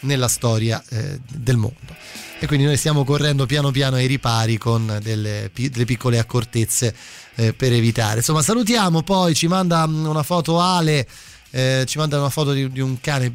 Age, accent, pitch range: 20-39, native, 130-190 Hz